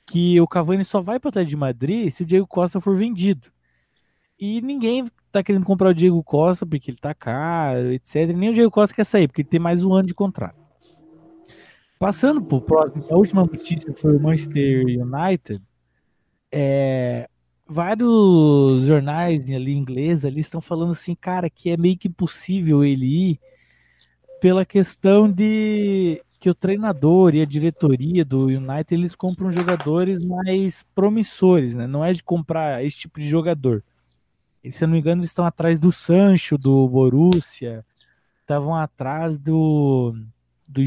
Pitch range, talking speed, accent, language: 140-185 Hz, 165 wpm, Brazilian, Portuguese